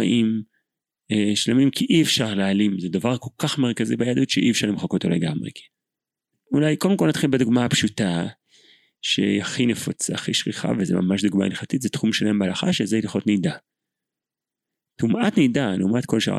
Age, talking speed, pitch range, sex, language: 30-49, 155 wpm, 95-120 Hz, male, Hebrew